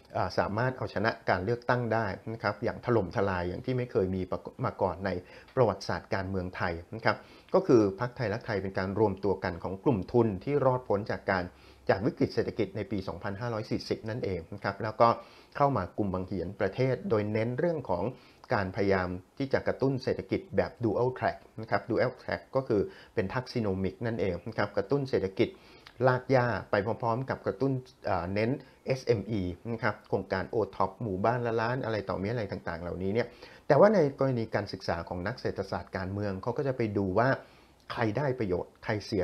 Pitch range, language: 95-125 Hz, Thai